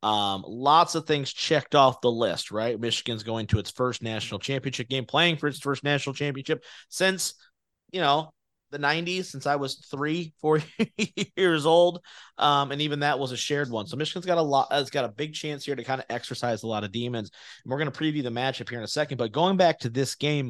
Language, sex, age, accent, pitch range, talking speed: English, male, 30-49, American, 125-160 Hz, 235 wpm